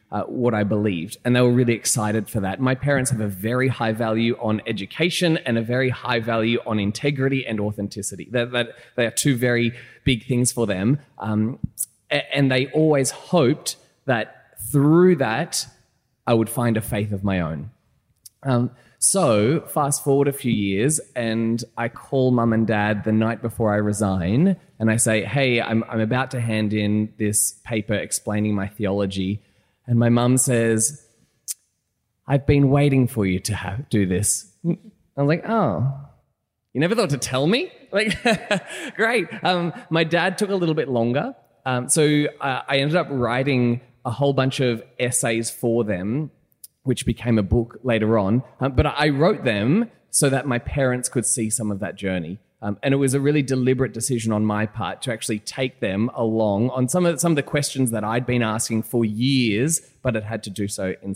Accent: Australian